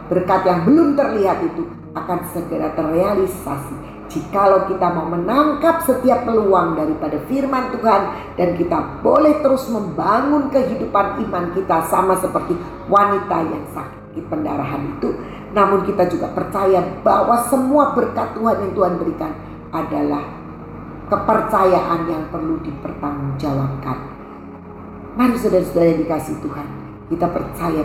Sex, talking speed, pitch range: female, 115 wpm, 170-245 Hz